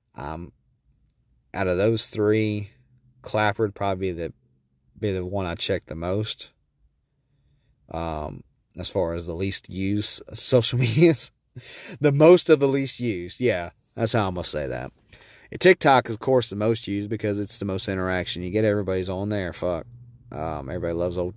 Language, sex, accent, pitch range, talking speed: English, male, American, 90-120 Hz, 175 wpm